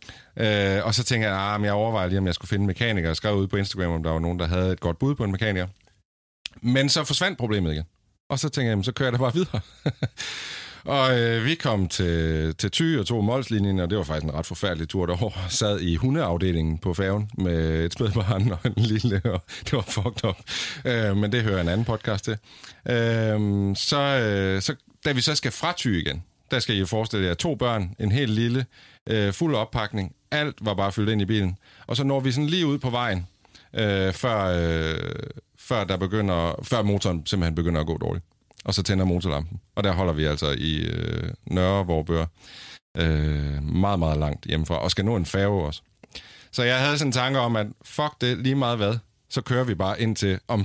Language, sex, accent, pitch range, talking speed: Danish, male, native, 90-120 Hz, 225 wpm